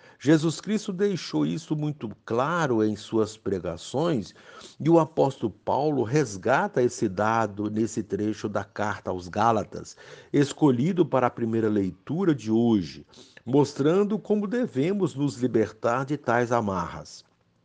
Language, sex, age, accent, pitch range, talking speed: Portuguese, male, 60-79, Brazilian, 105-155 Hz, 125 wpm